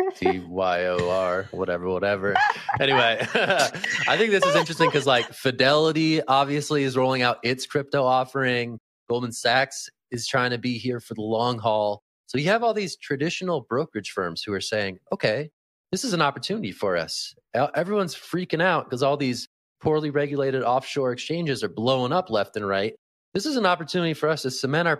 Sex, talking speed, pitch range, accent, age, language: male, 180 wpm, 100-140 Hz, American, 30-49, English